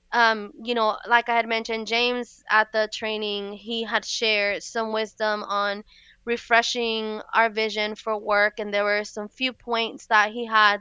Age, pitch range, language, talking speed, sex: 20-39, 210-245 Hz, English, 170 wpm, female